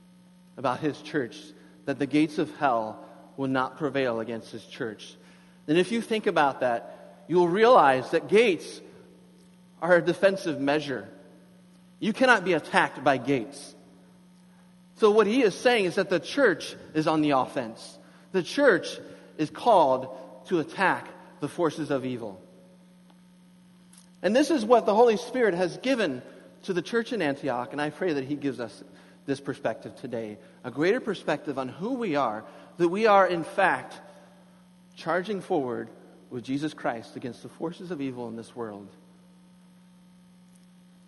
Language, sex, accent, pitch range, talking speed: English, male, American, 140-180 Hz, 155 wpm